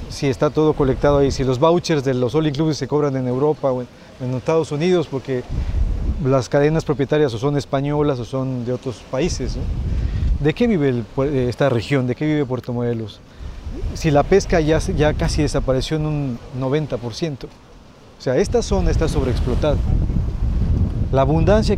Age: 40-59